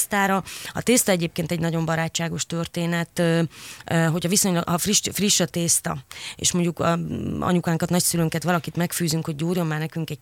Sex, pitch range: female, 155-175 Hz